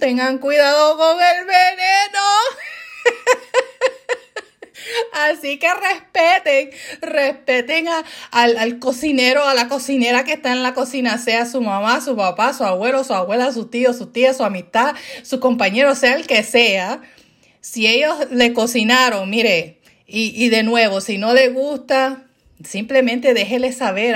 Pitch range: 225-280 Hz